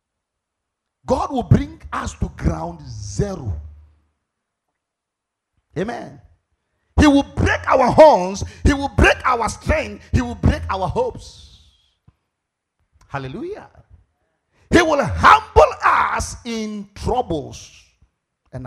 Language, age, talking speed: English, 50-69, 100 wpm